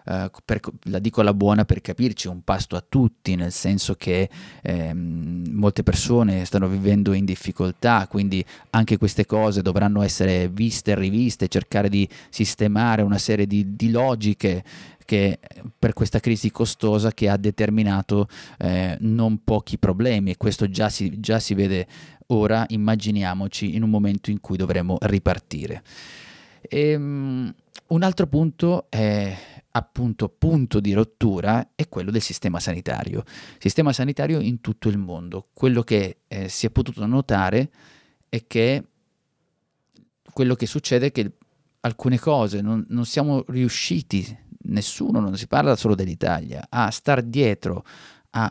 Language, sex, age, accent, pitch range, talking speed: Italian, male, 30-49, native, 100-120 Hz, 145 wpm